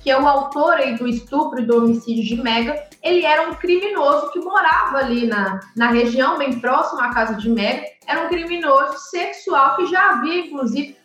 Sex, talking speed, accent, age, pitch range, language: female, 195 wpm, Brazilian, 20-39, 255-335 Hz, Portuguese